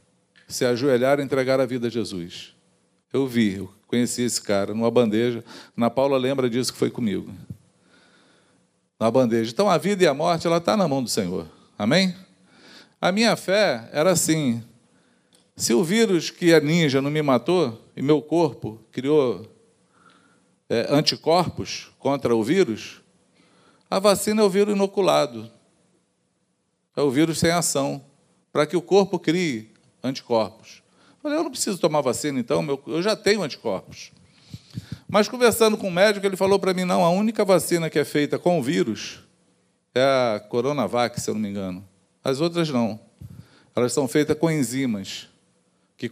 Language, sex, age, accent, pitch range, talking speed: Portuguese, male, 40-59, Brazilian, 120-175 Hz, 165 wpm